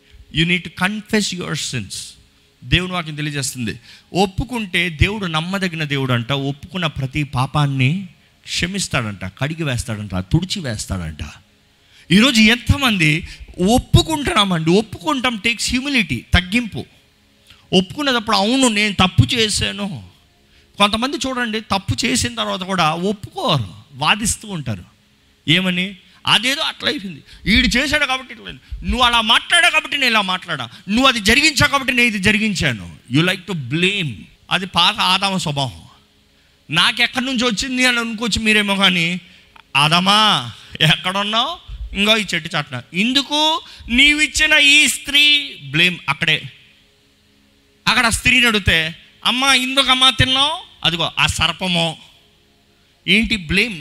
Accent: native